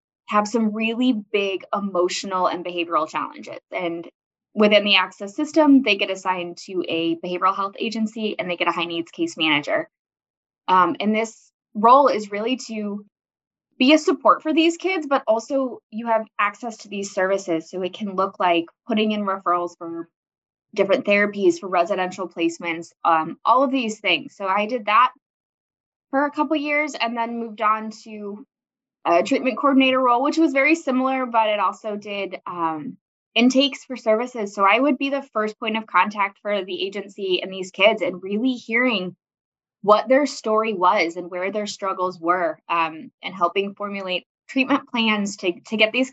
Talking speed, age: 175 wpm, 20-39